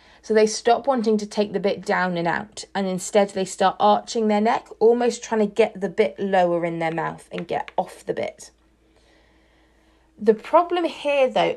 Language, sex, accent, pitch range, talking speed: English, female, British, 195-235 Hz, 190 wpm